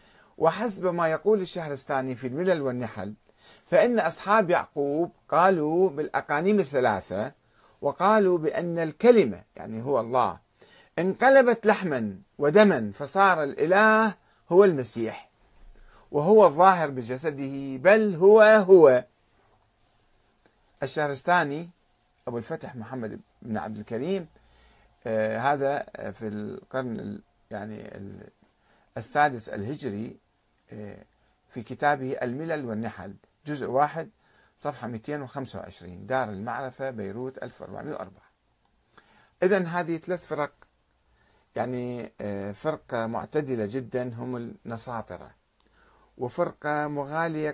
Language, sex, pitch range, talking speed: Arabic, male, 110-165 Hz, 85 wpm